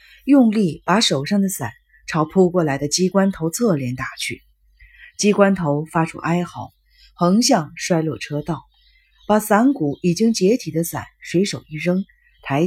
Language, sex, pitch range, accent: Chinese, female, 145-205 Hz, native